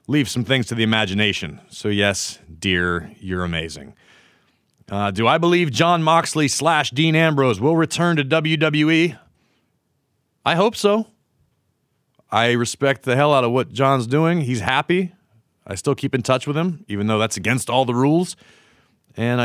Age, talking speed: 30-49, 165 wpm